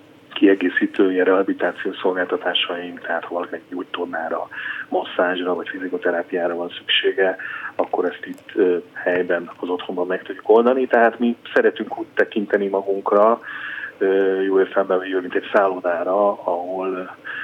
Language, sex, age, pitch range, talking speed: Hungarian, male, 30-49, 90-130 Hz, 115 wpm